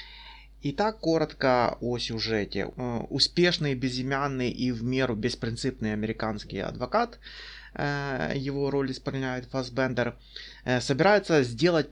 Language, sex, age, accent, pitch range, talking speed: Russian, male, 20-39, native, 120-155 Hz, 90 wpm